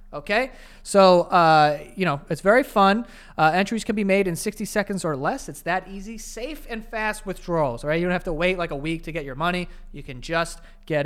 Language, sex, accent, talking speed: English, male, American, 230 wpm